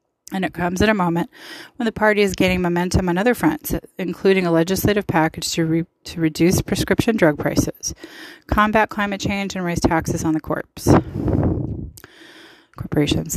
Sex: female